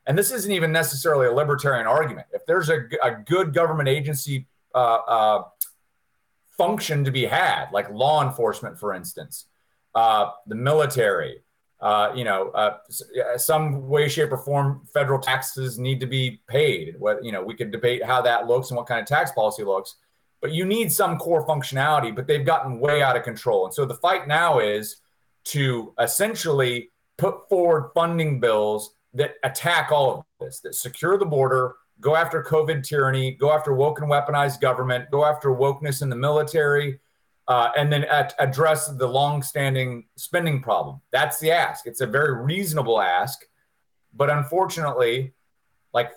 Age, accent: 30-49, American